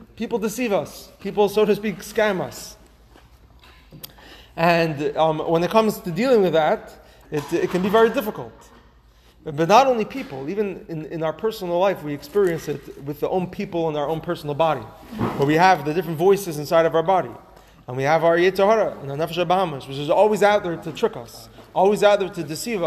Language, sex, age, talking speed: English, male, 30-49, 195 wpm